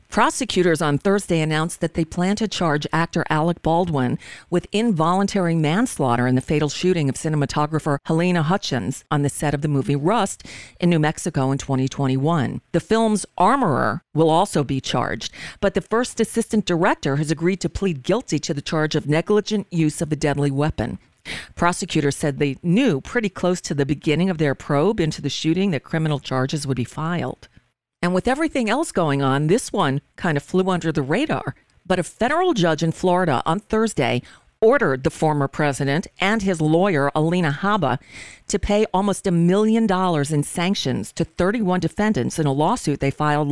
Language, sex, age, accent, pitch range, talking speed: English, female, 50-69, American, 150-190 Hz, 180 wpm